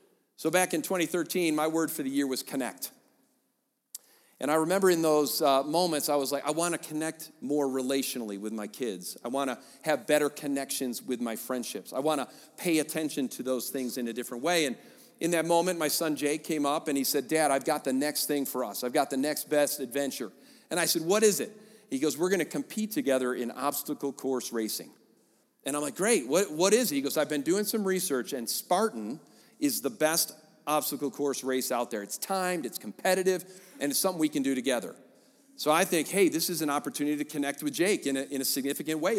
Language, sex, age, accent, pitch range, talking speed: English, male, 40-59, American, 140-185 Hz, 225 wpm